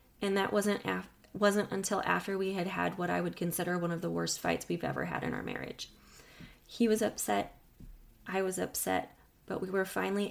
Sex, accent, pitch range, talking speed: female, American, 135-210 Hz, 205 wpm